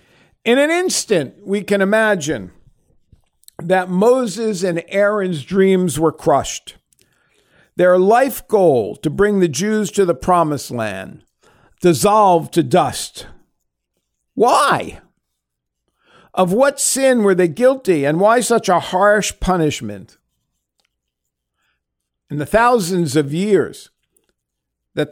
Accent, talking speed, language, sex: American, 110 wpm, English, male